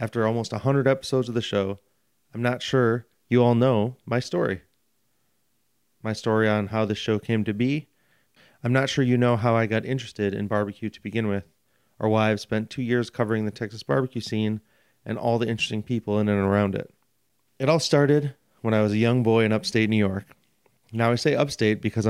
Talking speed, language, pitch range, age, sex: 205 wpm, English, 105-125 Hz, 30-49, male